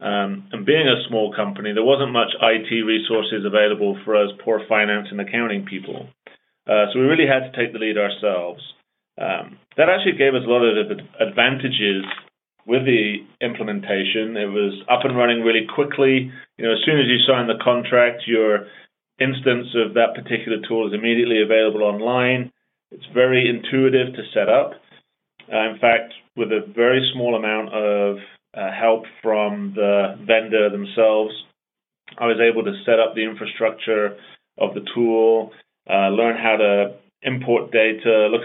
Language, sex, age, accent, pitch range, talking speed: English, male, 30-49, British, 105-120 Hz, 165 wpm